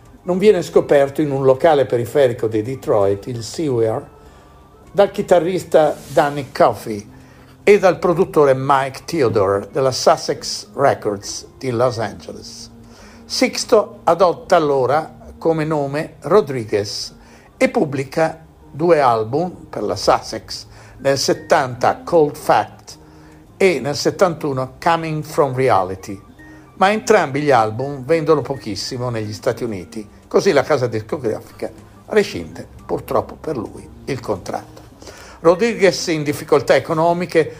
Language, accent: Italian, native